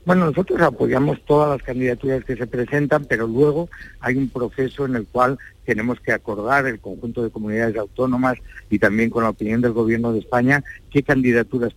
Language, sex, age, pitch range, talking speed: Spanish, male, 60-79, 110-130 Hz, 185 wpm